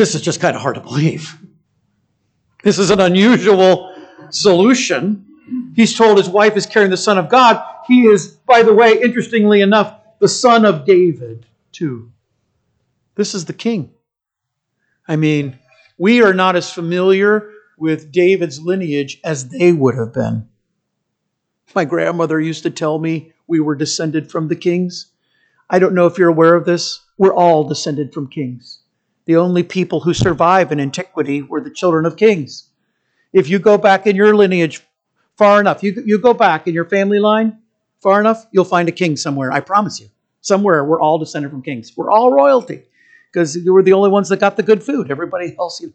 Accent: American